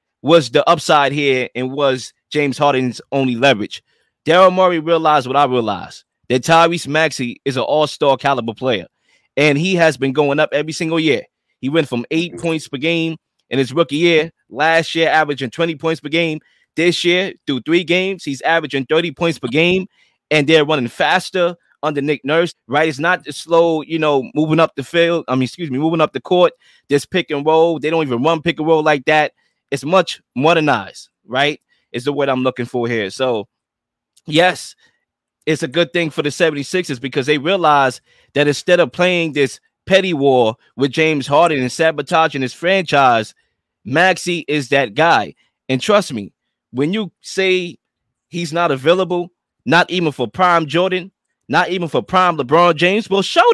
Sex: male